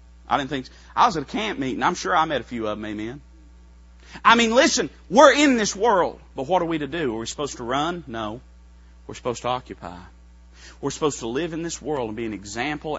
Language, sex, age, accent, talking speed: English, male, 30-49, American, 230 wpm